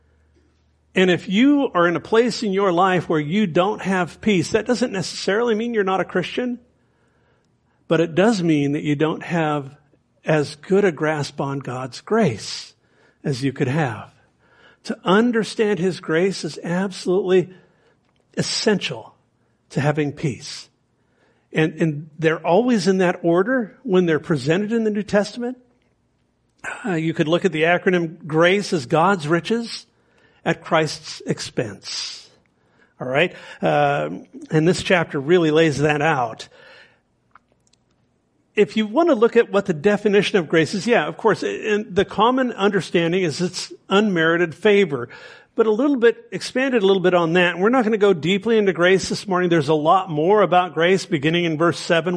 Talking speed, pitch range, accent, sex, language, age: 165 wpm, 160-205 Hz, American, male, English, 50-69